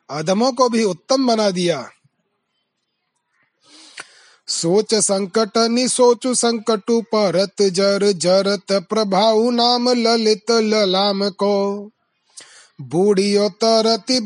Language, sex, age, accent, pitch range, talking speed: Hindi, male, 30-49, native, 195-230 Hz, 65 wpm